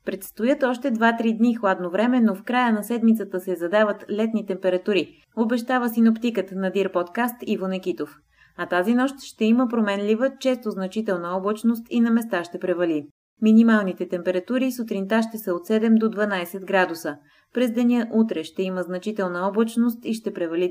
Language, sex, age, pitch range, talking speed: Bulgarian, female, 20-39, 185-230 Hz, 160 wpm